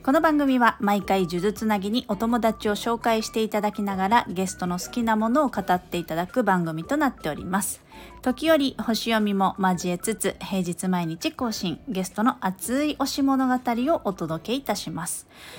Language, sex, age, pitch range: Japanese, female, 40-59, 180-250 Hz